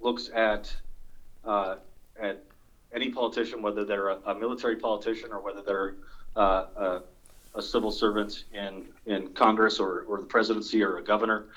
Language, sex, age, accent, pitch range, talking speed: English, male, 30-49, American, 100-110 Hz, 155 wpm